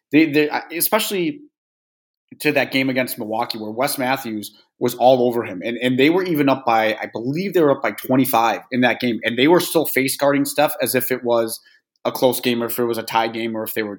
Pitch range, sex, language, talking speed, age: 120-160 Hz, male, English, 250 wpm, 30-49